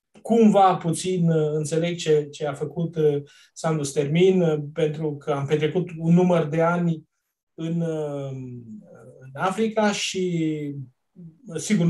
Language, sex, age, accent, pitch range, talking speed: Romanian, male, 30-49, native, 155-190 Hz, 110 wpm